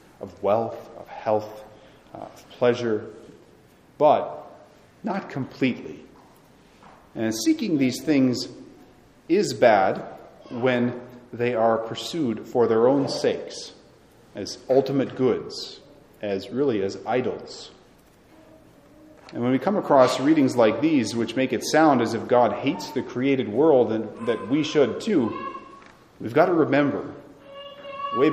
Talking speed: 125 wpm